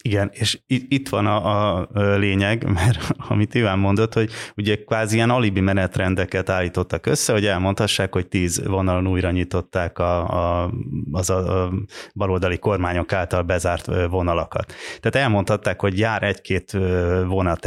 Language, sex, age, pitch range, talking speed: Hungarian, male, 30-49, 90-110 Hz, 140 wpm